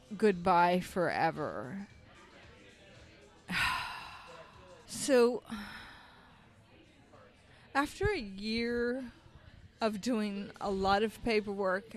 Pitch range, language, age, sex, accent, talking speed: 220-270 Hz, English, 30-49, female, American, 60 wpm